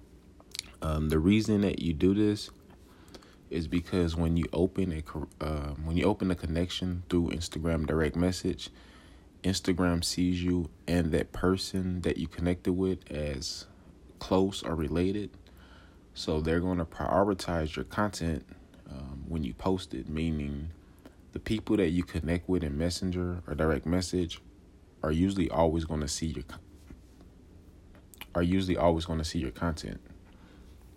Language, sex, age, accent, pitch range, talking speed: English, male, 30-49, American, 75-90 Hz, 145 wpm